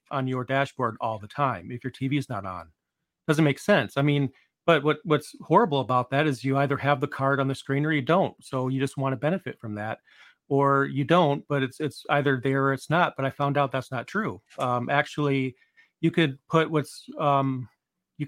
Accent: American